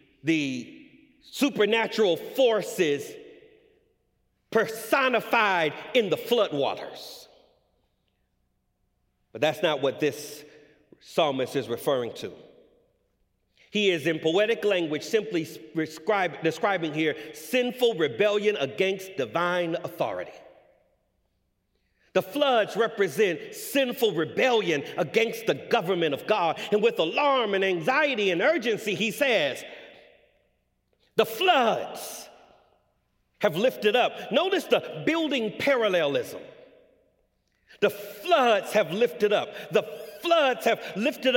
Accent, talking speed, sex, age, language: American, 100 wpm, male, 40-59, English